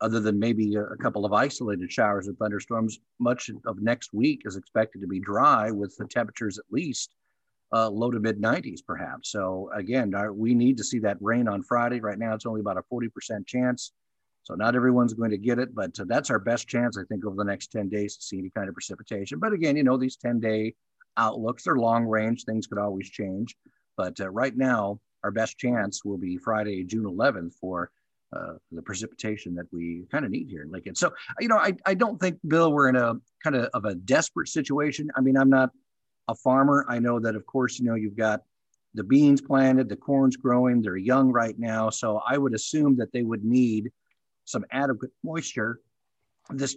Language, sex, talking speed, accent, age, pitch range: English, male, 210 wpm, American, 50-69, 105-125 Hz